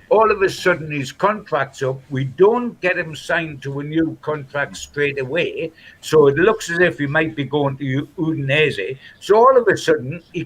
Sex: male